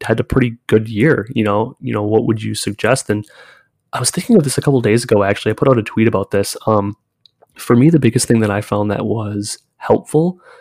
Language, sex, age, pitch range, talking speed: English, male, 20-39, 105-120 Hz, 245 wpm